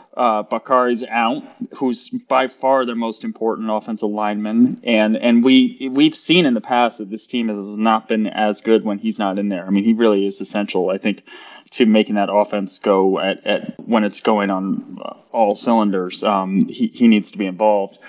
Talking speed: 200 wpm